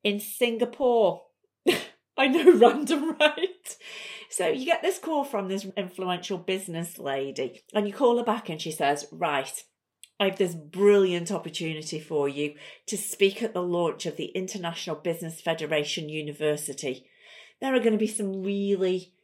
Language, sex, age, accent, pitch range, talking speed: English, female, 40-59, British, 160-205 Hz, 155 wpm